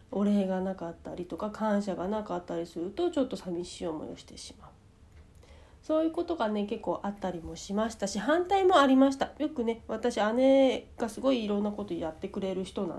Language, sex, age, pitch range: Japanese, female, 40-59, 200-280 Hz